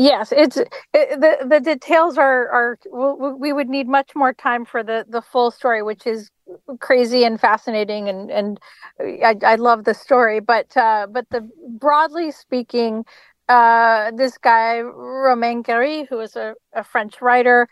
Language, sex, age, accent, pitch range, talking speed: English, female, 40-59, American, 225-265 Hz, 165 wpm